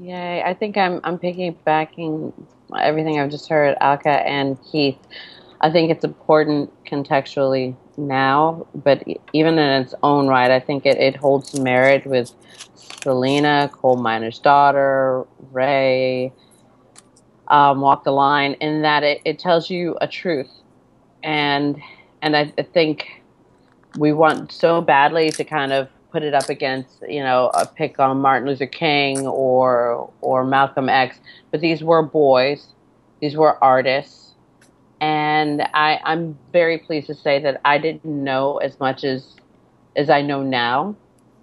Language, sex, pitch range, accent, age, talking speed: English, female, 135-155 Hz, American, 30-49, 150 wpm